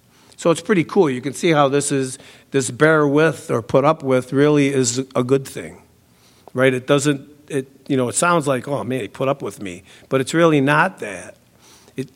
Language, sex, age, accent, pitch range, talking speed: English, male, 50-69, American, 120-140 Hz, 215 wpm